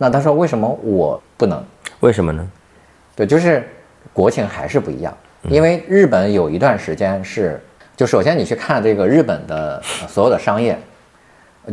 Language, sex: Chinese, male